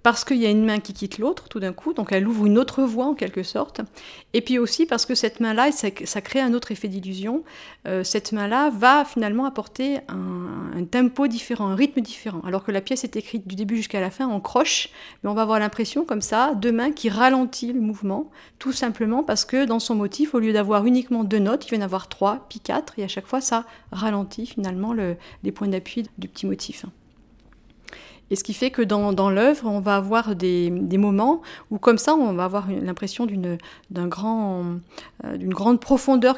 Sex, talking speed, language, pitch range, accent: female, 225 wpm, French, 200-255 Hz, French